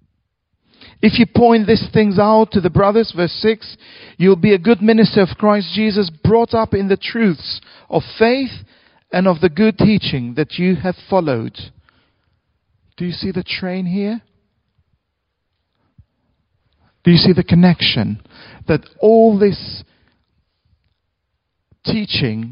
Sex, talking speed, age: male, 135 wpm, 50-69